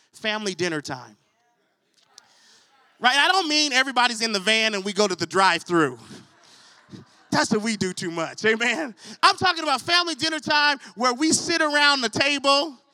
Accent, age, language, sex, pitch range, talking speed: American, 30-49, English, male, 220-335 Hz, 170 wpm